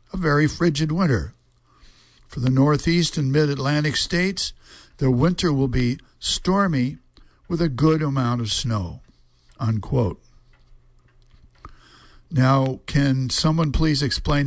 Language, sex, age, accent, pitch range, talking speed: English, male, 60-79, American, 120-150 Hz, 110 wpm